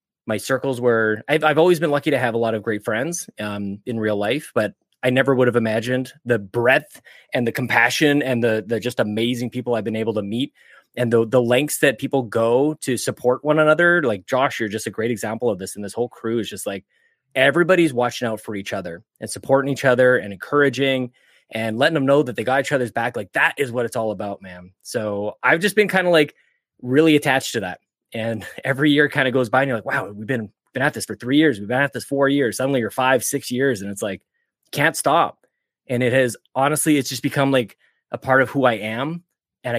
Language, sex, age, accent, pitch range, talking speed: English, male, 20-39, American, 115-155 Hz, 240 wpm